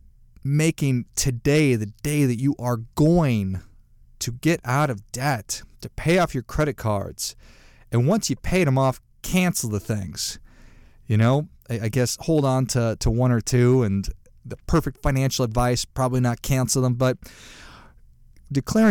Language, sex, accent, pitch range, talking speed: English, male, American, 110-140 Hz, 160 wpm